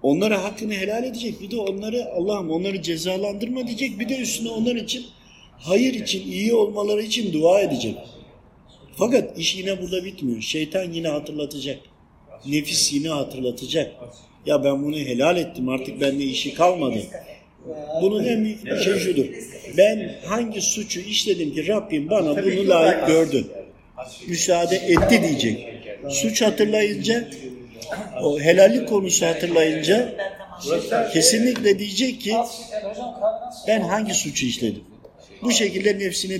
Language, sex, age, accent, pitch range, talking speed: Turkish, male, 50-69, native, 145-210 Hz, 125 wpm